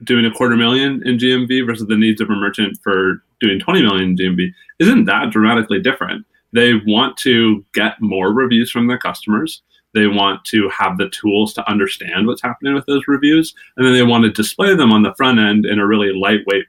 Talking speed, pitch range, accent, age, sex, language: 210 wpm, 95-125 Hz, American, 30-49, male, English